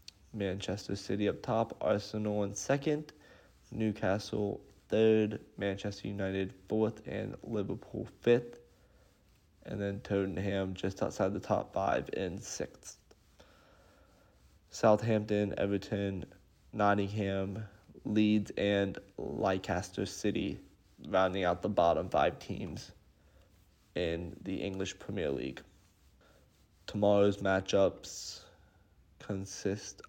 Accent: American